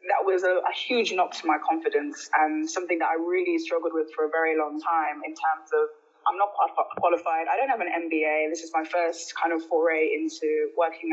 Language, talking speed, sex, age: English, 220 wpm, female, 20-39